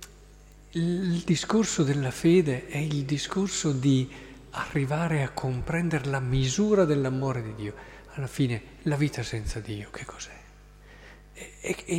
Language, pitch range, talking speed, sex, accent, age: Italian, 135-185 Hz, 125 wpm, male, native, 50-69